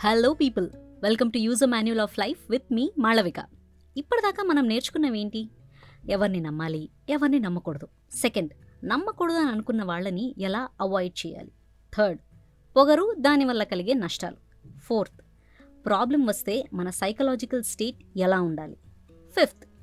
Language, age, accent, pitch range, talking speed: Telugu, 20-39, native, 190-270 Hz, 125 wpm